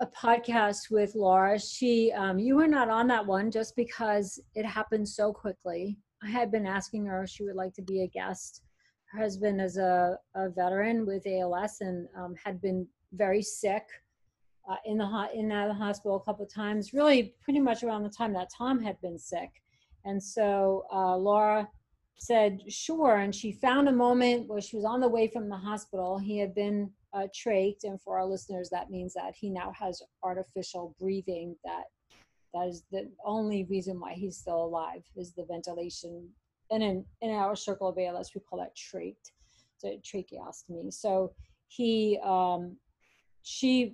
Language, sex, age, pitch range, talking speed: English, female, 40-59, 185-220 Hz, 185 wpm